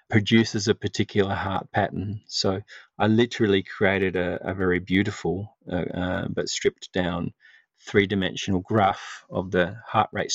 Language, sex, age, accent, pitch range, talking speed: English, male, 40-59, Australian, 100-125 Hz, 140 wpm